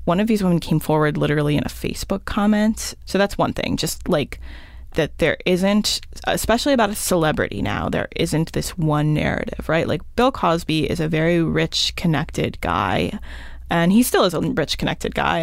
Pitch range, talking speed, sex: 150-190 Hz, 185 wpm, female